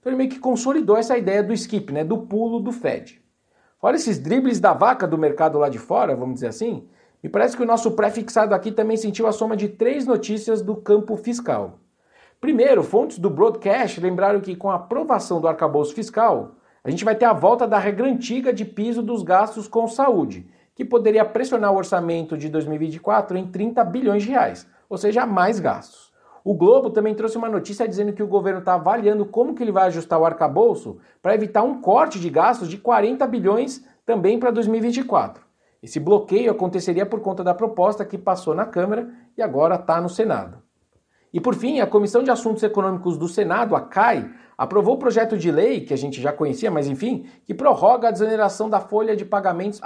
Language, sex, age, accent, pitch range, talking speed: Portuguese, male, 50-69, Brazilian, 190-230 Hz, 195 wpm